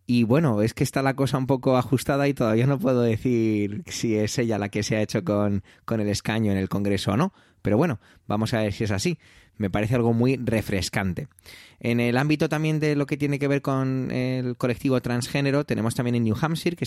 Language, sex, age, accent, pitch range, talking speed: Spanish, male, 20-39, Spanish, 105-130 Hz, 230 wpm